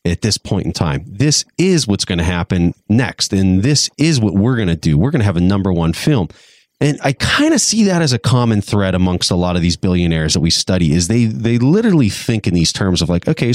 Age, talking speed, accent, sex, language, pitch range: 30-49, 255 wpm, American, male, English, 90-120 Hz